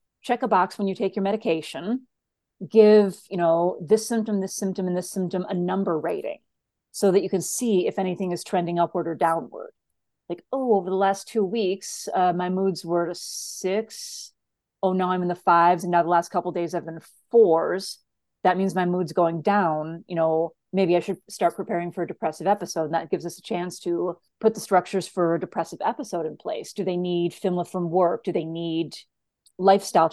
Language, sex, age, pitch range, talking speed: English, female, 30-49, 175-205 Hz, 210 wpm